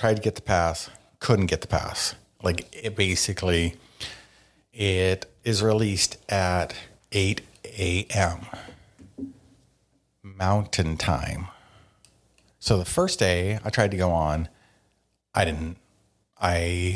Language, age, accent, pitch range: English, 50-69, American, 90-110 Hz